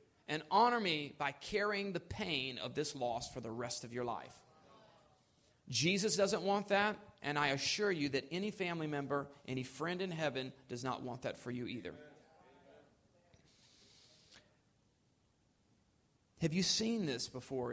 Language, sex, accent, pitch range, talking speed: English, male, American, 125-160 Hz, 150 wpm